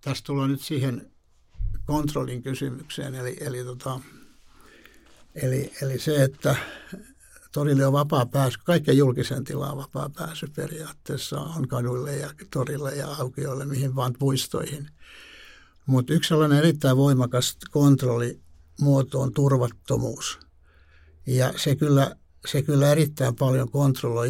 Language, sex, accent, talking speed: Finnish, male, native, 120 wpm